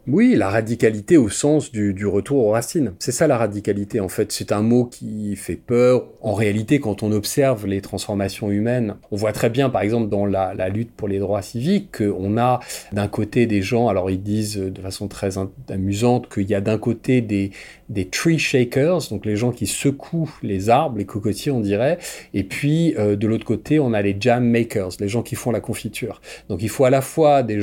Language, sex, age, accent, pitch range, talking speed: French, male, 40-59, French, 100-125 Hz, 230 wpm